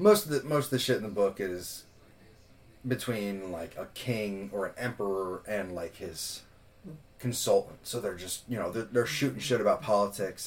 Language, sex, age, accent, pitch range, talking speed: English, male, 30-49, American, 95-120 Hz, 190 wpm